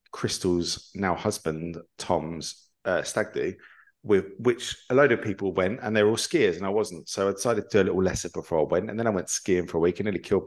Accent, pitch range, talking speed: British, 90-105 Hz, 245 wpm